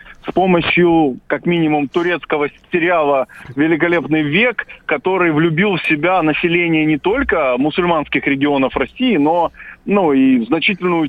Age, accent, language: 40-59, native, Russian